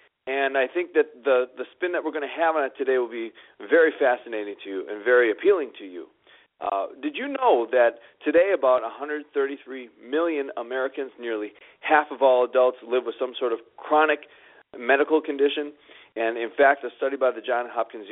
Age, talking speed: 40-59, 190 wpm